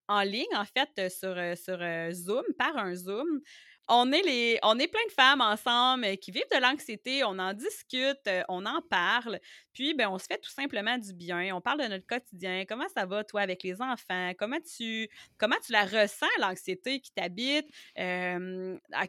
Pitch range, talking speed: 195-280 Hz, 190 wpm